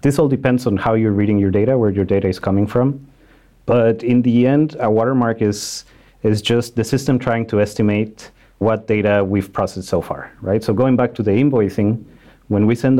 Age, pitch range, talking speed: 30-49, 100-120 Hz, 205 wpm